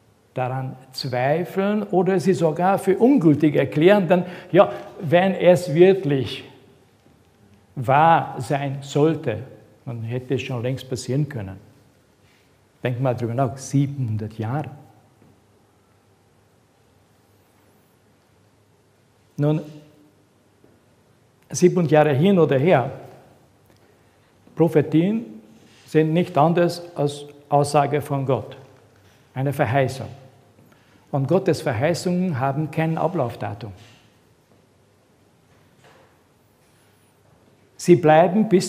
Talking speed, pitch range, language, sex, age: 85 wpm, 120-160 Hz, German, male, 60-79